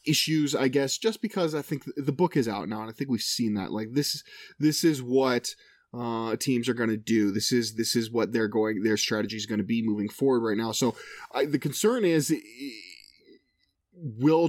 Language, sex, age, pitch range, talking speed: English, male, 20-39, 120-150 Hz, 210 wpm